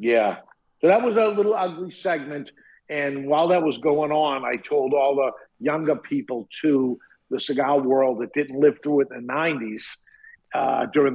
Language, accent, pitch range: English, American, 140-165 Hz